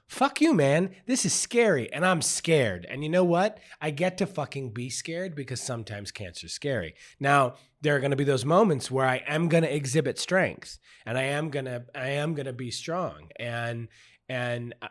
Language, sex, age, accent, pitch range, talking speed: English, male, 30-49, American, 120-150 Hz, 190 wpm